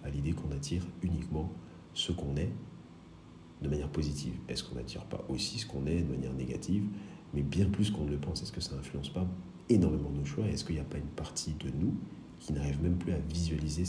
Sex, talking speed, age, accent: male, 225 wpm, 40-59, French